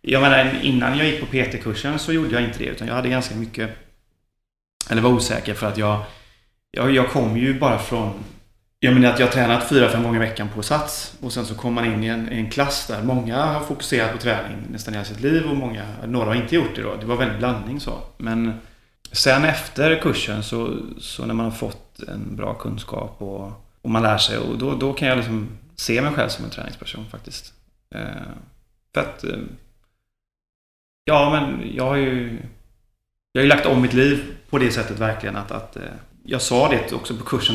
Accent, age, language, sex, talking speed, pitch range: Swedish, 30-49, English, male, 210 wpm, 105-130 Hz